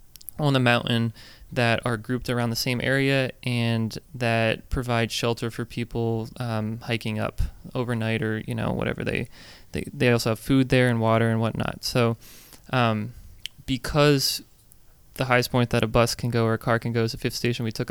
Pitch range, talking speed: 115-125 Hz, 190 wpm